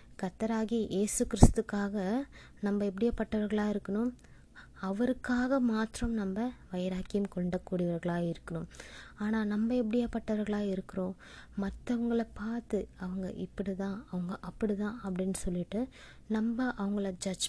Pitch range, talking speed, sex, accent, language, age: 185-225 Hz, 95 wpm, female, native, Tamil, 20-39